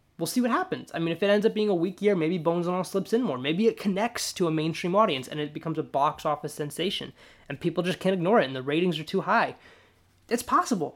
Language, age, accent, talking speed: English, 20-39, American, 270 wpm